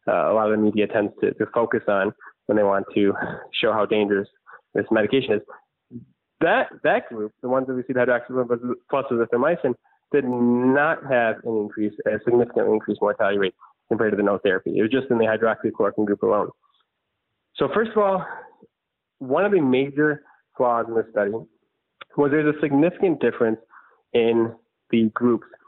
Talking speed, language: 175 wpm, English